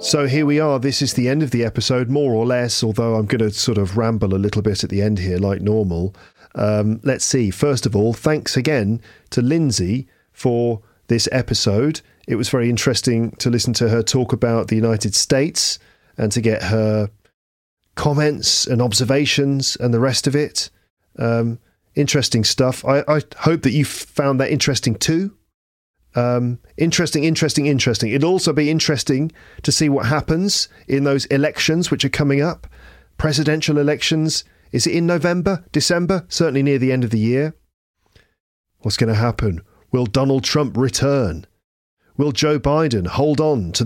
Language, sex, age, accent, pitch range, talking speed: English, male, 40-59, British, 110-150 Hz, 175 wpm